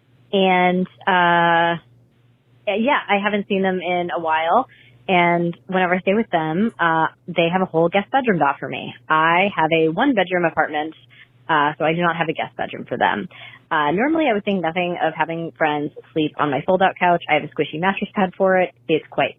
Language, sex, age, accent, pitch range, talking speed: English, female, 20-39, American, 155-190 Hz, 205 wpm